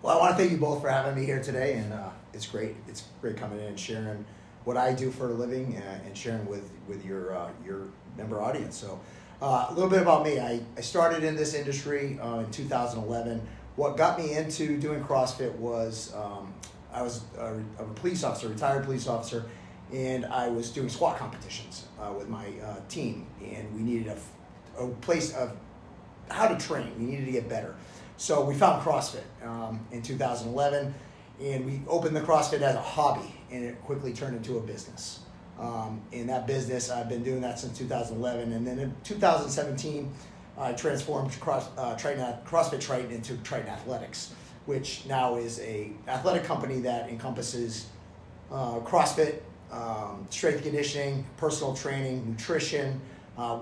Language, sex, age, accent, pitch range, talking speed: English, male, 30-49, American, 115-140 Hz, 180 wpm